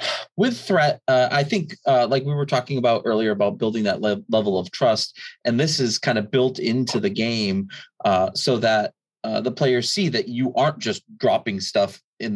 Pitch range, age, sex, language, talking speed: 105-135 Hz, 30-49, male, English, 205 wpm